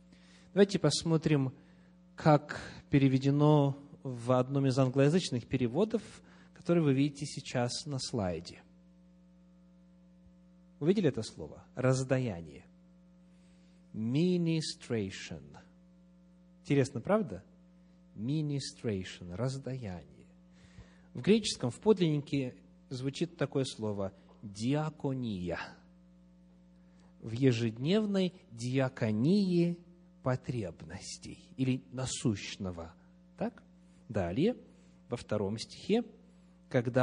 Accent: native